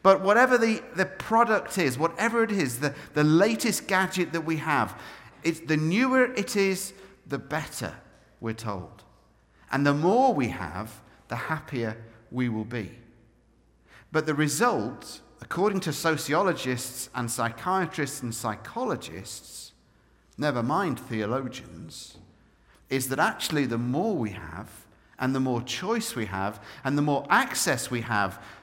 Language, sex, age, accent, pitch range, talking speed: English, male, 50-69, British, 120-185 Hz, 140 wpm